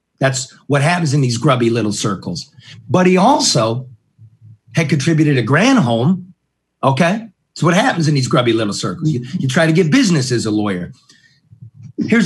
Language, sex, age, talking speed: English, male, 40-59, 170 wpm